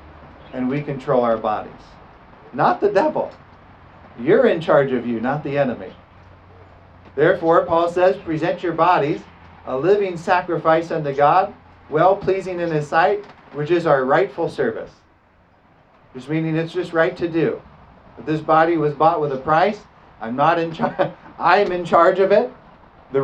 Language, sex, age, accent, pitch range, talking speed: English, male, 40-59, American, 140-190 Hz, 155 wpm